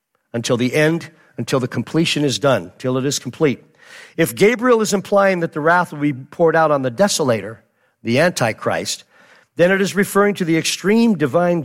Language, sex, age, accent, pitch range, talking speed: English, male, 50-69, American, 125-175 Hz, 185 wpm